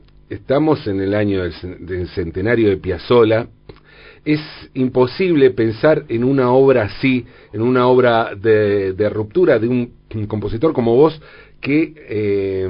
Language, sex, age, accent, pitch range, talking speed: Spanish, male, 40-59, Argentinian, 105-150 Hz, 130 wpm